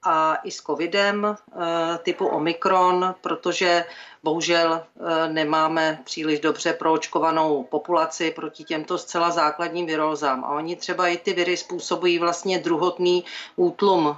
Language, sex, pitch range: Czech, female, 165-185 Hz